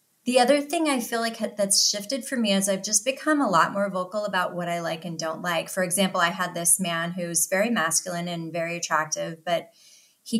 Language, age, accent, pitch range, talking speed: English, 30-49, American, 185-245 Hz, 225 wpm